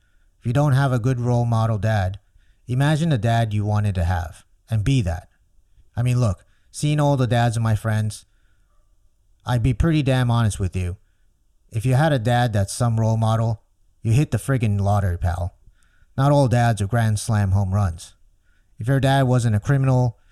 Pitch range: 95-120 Hz